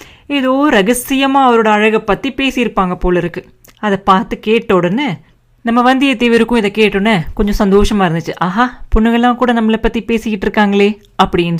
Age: 30-49